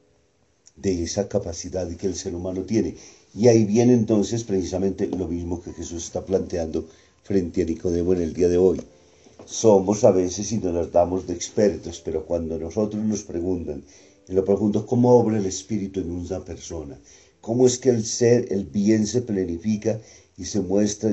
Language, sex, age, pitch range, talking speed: Spanish, male, 50-69, 85-105 Hz, 175 wpm